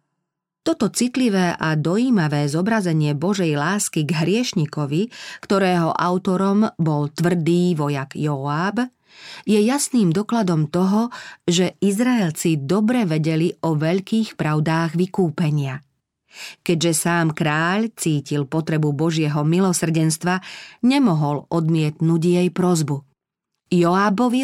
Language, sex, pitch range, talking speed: Slovak, female, 155-200 Hz, 95 wpm